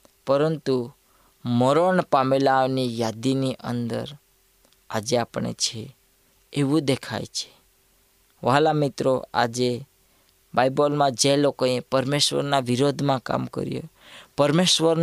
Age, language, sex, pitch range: 20-39, Gujarati, female, 120-140 Hz